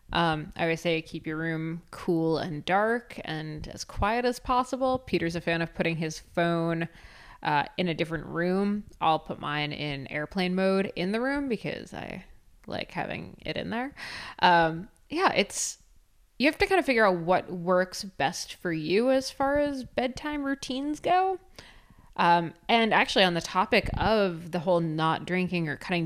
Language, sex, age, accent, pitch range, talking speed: English, female, 20-39, American, 160-205 Hz, 175 wpm